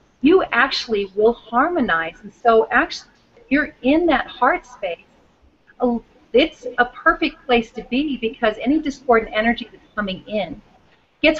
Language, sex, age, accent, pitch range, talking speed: English, female, 40-59, American, 210-260 Hz, 140 wpm